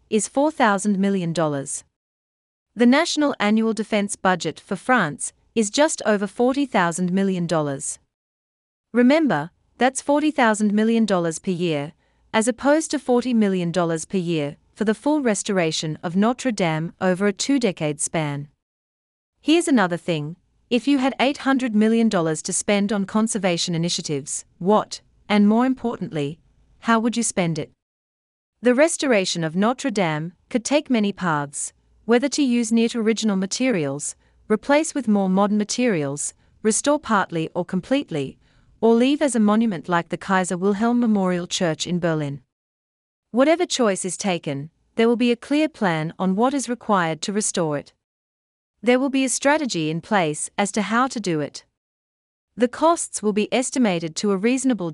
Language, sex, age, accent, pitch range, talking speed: English, female, 40-59, Australian, 160-240 Hz, 150 wpm